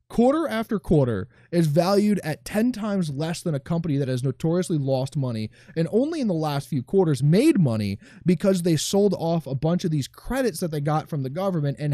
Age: 20-39